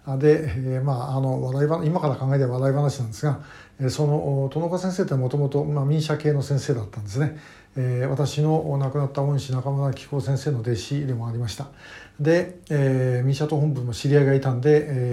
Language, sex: Japanese, male